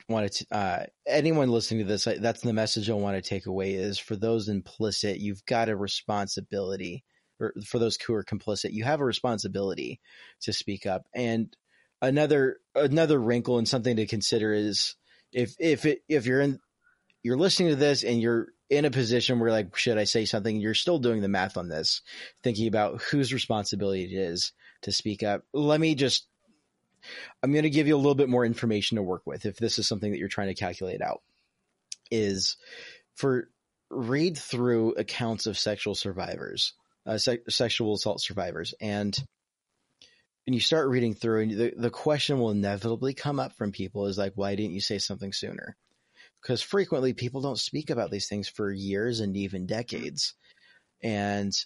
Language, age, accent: English, 30-49, American